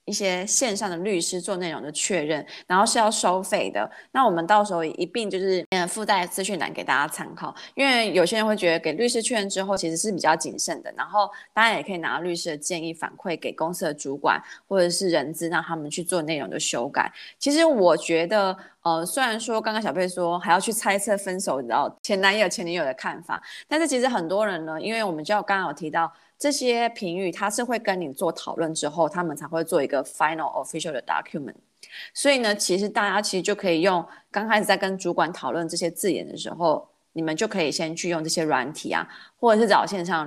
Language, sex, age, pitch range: Chinese, female, 20-39, 165-210 Hz